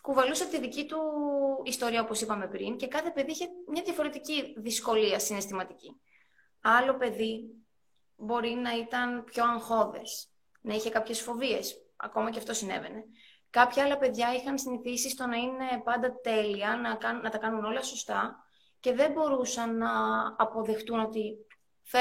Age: 20-39